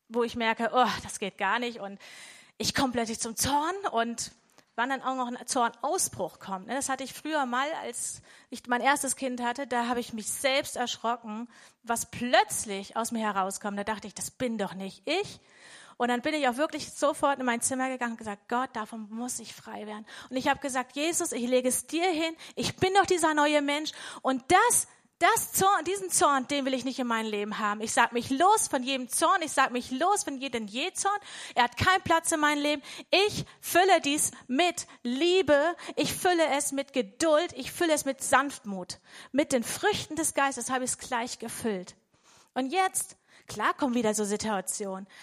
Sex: female